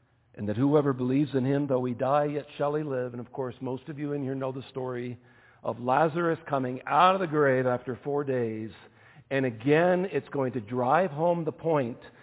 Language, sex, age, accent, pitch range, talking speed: English, male, 50-69, American, 115-140 Hz, 210 wpm